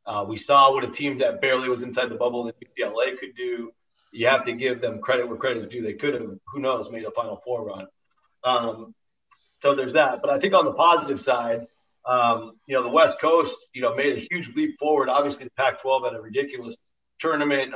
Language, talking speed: English, 225 wpm